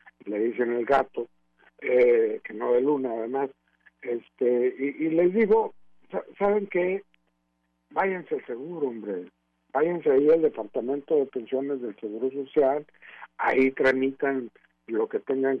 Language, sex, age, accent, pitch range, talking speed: Spanish, male, 50-69, Mexican, 130-180 Hz, 130 wpm